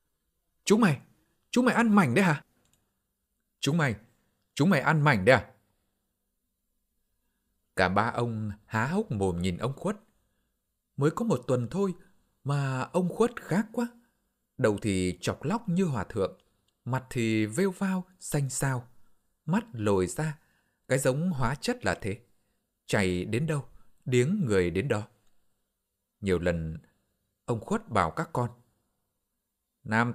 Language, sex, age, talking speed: Vietnamese, male, 20-39, 145 wpm